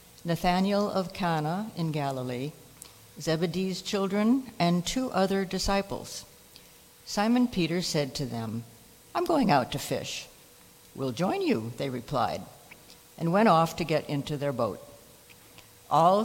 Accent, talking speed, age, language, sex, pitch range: American, 130 wpm, 60-79, English, female, 150-205 Hz